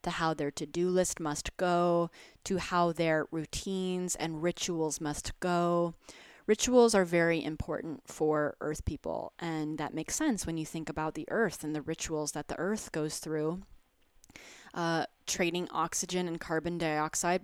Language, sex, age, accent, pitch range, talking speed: English, female, 20-39, American, 160-185 Hz, 155 wpm